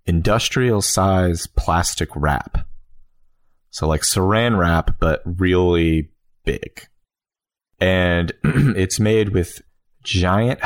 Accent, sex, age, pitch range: American, male, 30-49, 80-100 Hz